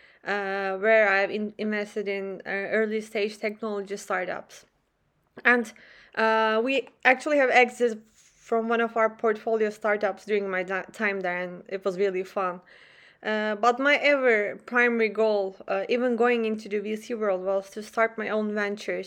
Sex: female